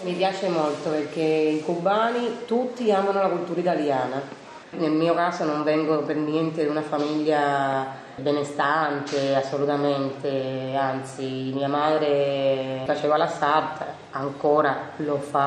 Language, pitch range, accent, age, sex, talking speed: Italian, 145-170 Hz, native, 30-49, female, 125 wpm